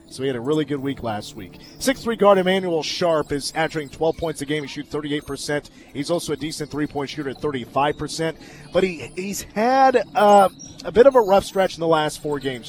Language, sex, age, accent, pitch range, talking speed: English, male, 30-49, American, 145-175 Hz, 220 wpm